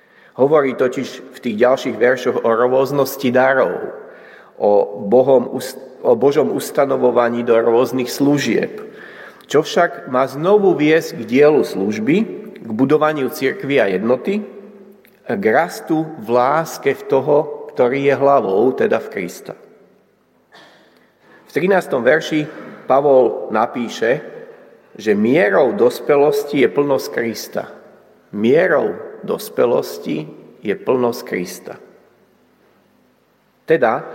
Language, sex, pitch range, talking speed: Slovak, male, 135-180 Hz, 100 wpm